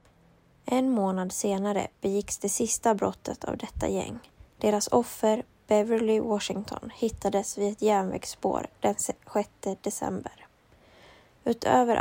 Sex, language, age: female, Swedish, 20-39